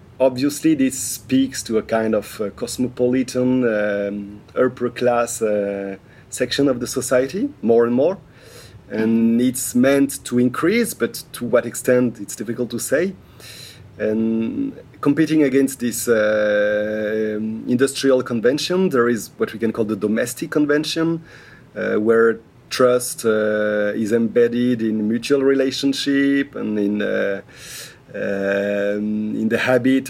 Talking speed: 130 wpm